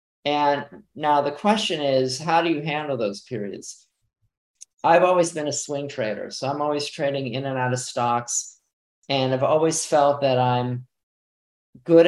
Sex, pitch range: male, 125-150 Hz